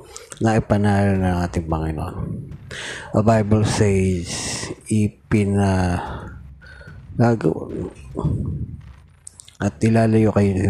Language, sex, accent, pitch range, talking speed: Filipino, male, native, 95-105 Hz, 75 wpm